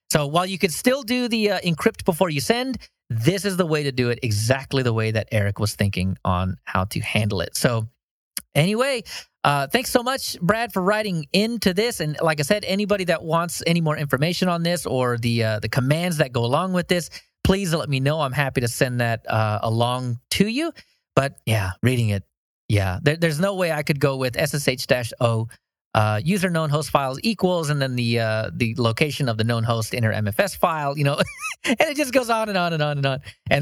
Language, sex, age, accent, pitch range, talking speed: English, male, 30-49, American, 115-175 Hz, 225 wpm